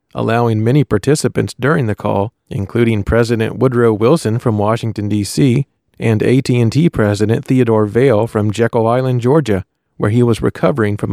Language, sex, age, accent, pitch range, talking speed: English, male, 40-59, American, 105-130 Hz, 145 wpm